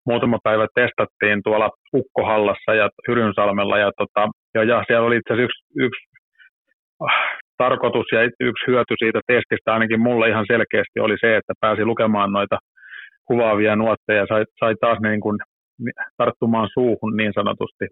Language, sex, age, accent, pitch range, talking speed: Finnish, male, 30-49, native, 110-120 Hz, 140 wpm